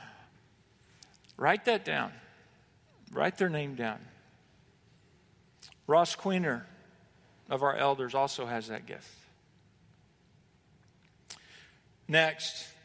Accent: American